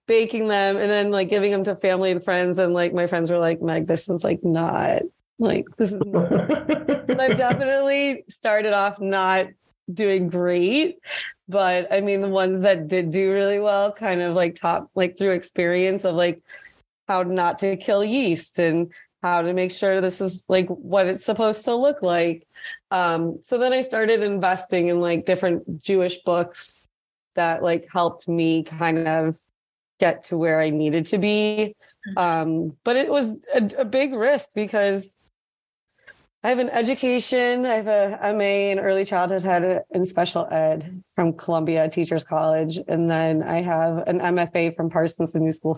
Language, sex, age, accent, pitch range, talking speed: English, female, 30-49, American, 170-205 Hz, 175 wpm